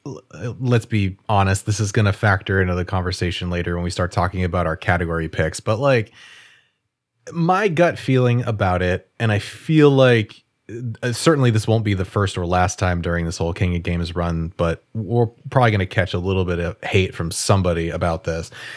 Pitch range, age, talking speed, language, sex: 90-125 Hz, 30-49, 200 wpm, English, male